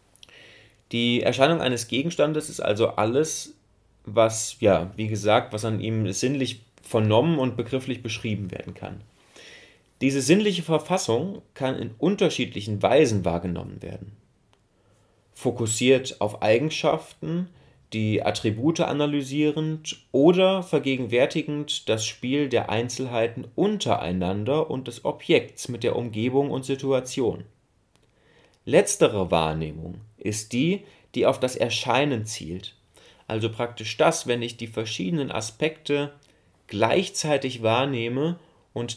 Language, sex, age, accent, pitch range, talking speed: German, male, 30-49, German, 105-145 Hz, 110 wpm